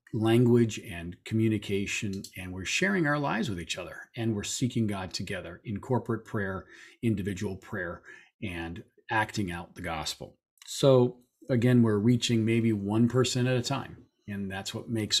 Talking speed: 160 wpm